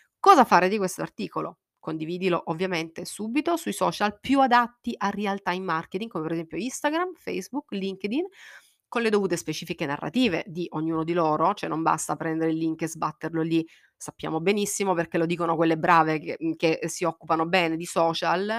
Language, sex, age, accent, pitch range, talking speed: Italian, female, 30-49, native, 165-230 Hz, 175 wpm